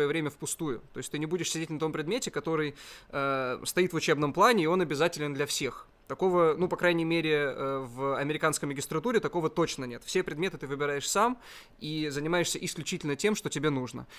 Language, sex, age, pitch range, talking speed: Russian, male, 20-39, 140-165 Hz, 190 wpm